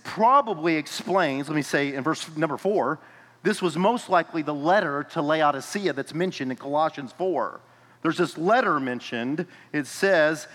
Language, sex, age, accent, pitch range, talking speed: English, male, 40-59, American, 145-180 Hz, 160 wpm